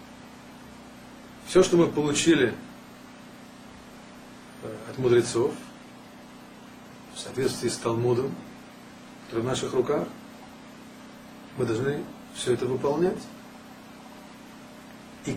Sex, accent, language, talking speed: male, native, Russian, 80 wpm